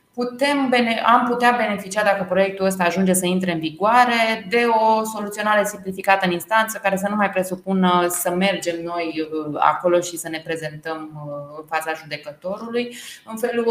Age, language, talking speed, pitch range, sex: 20-39, Romanian, 150 wpm, 170-205 Hz, female